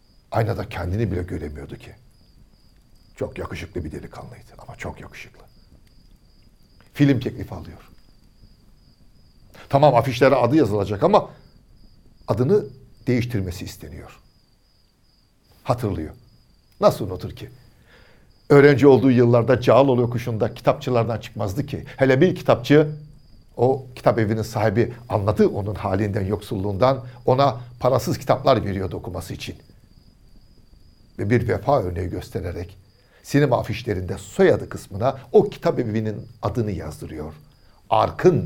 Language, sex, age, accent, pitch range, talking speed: Turkish, male, 60-79, native, 100-125 Hz, 105 wpm